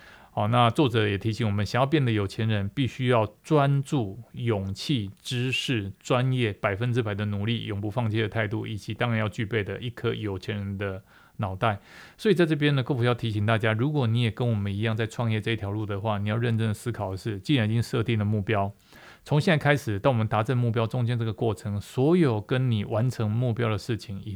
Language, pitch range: Chinese, 105-125 Hz